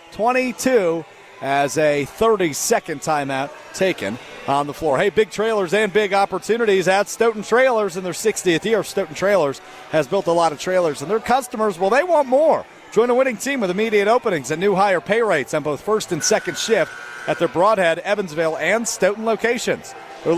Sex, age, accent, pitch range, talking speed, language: male, 40-59, American, 165-220 Hz, 190 wpm, English